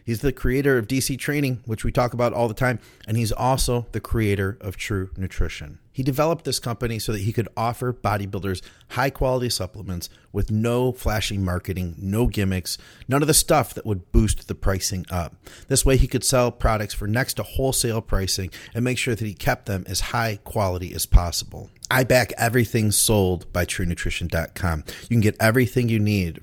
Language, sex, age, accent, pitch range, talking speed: English, male, 30-49, American, 95-120 Hz, 190 wpm